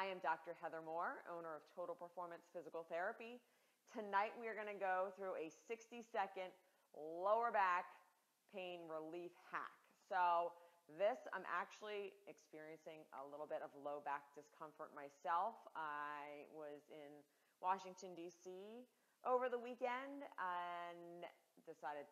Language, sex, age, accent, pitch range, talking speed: English, female, 30-49, American, 155-190 Hz, 130 wpm